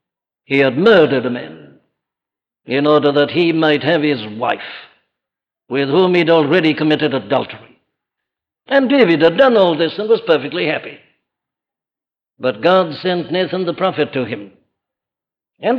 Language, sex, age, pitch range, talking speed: English, male, 60-79, 150-205 Hz, 145 wpm